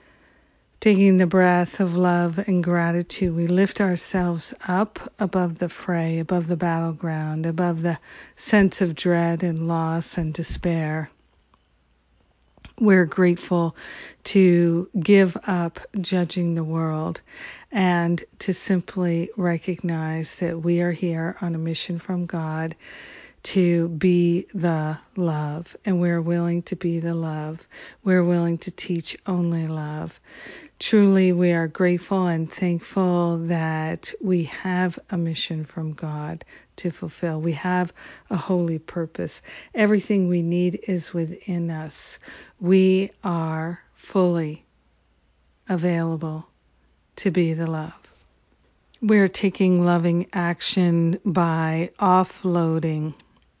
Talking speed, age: 115 wpm, 50-69